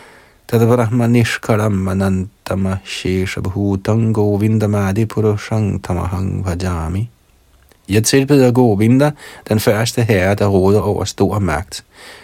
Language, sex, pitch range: Danish, male, 95-120 Hz